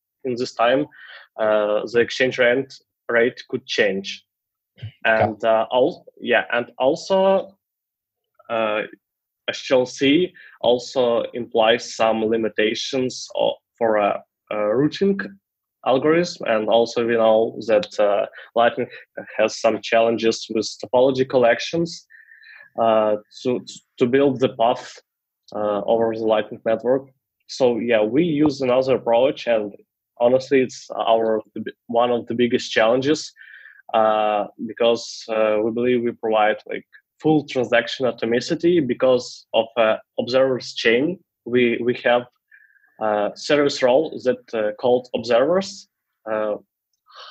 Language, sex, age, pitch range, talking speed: English, male, 20-39, 110-130 Hz, 120 wpm